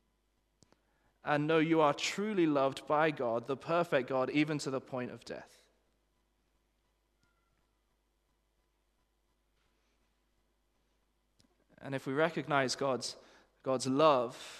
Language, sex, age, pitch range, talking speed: English, male, 20-39, 130-165 Hz, 100 wpm